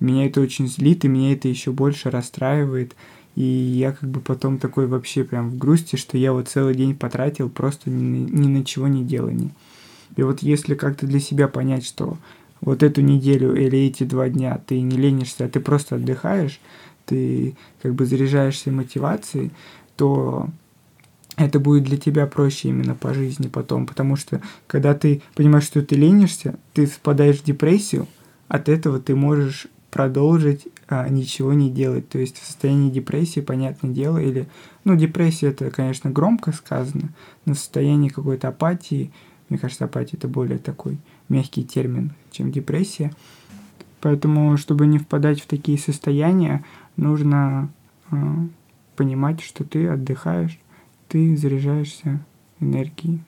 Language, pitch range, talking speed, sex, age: Russian, 130-150 Hz, 150 wpm, male, 20-39